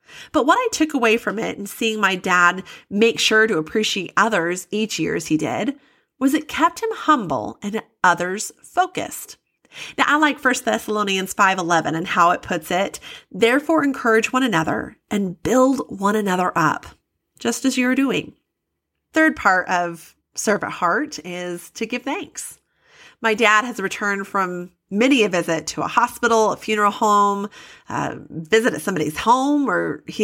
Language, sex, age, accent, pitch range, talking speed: English, female, 30-49, American, 190-255 Hz, 165 wpm